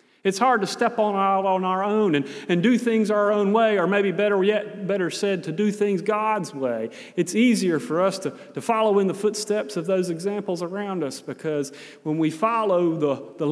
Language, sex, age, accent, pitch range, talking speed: English, male, 40-59, American, 165-220 Hz, 210 wpm